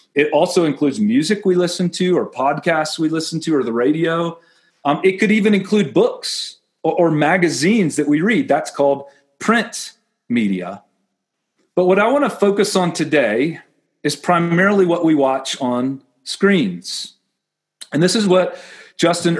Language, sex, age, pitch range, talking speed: English, male, 40-59, 145-190 Hz, 160 wpm